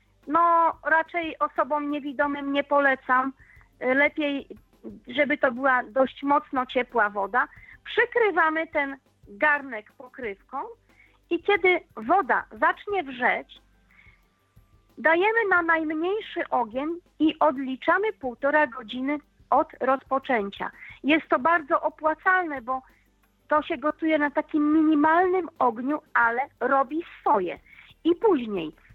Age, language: 40-59, Polish